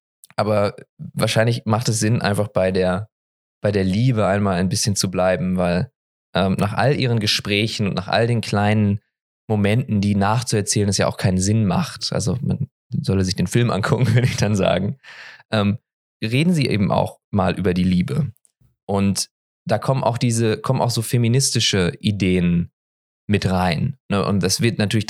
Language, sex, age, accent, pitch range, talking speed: English, male, 20-39, German, 100-130 Hz, 170 wpm